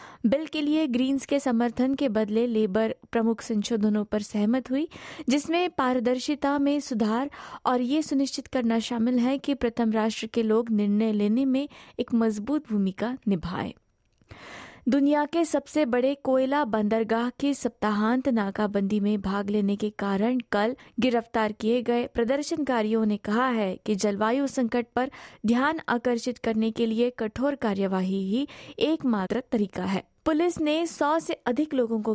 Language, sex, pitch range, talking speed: Hindi, female, 220-270 Hz, 150 wpm